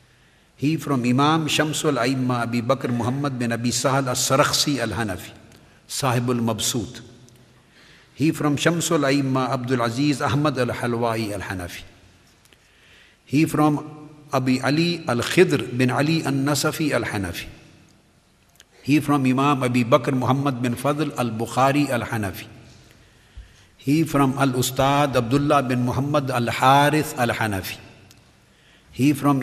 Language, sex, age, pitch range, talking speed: English, male, 50-69, 115-140 Hz, 135 wpm